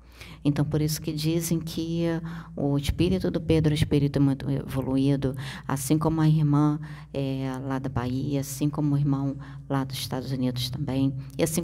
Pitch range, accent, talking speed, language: 140-165 Hz, Brazilian, 175 wpm, Portuguese